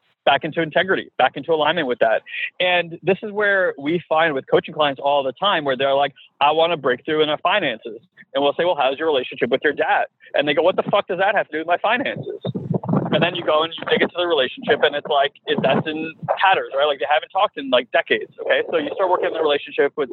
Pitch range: 150-190 Hz